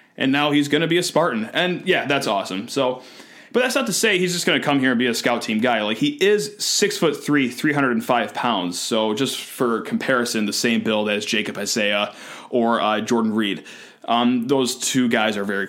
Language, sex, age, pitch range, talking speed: English, male, 20-39, 120-170 Hz, 235 wpm